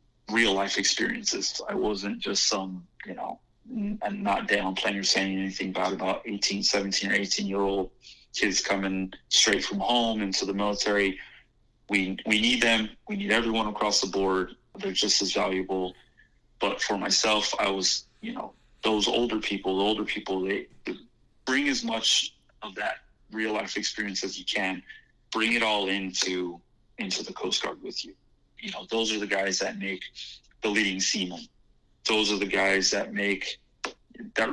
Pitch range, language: 95-110 Hz, English